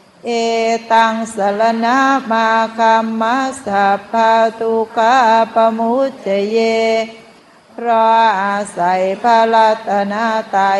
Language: Thai